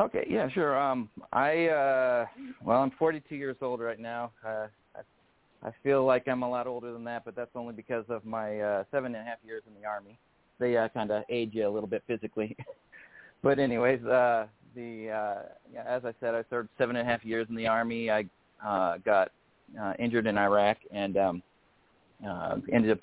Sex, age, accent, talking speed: male, 30-49, American, 210 wpm